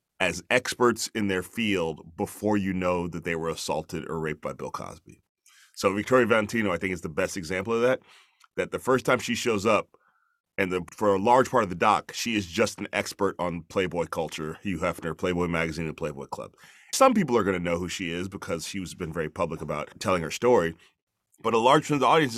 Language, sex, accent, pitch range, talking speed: English, male, American, 95-120 Hz, 230 wpm